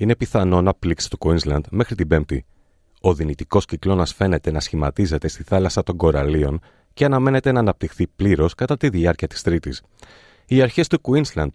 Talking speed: 170 wpm